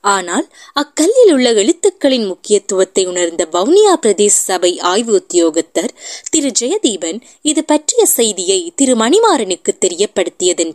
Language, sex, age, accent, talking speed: Tamil, female, 20-39, native, 90 wpm